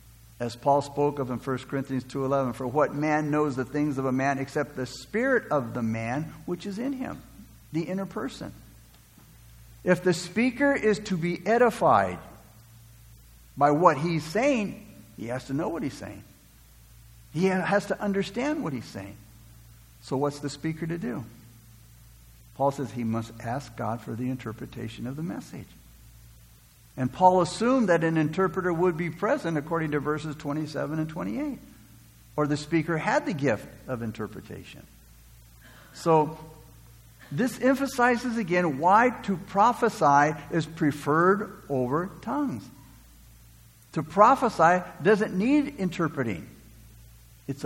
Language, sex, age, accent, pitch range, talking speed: English, male, 60-79, American, 115-180 Hz, 140 wpm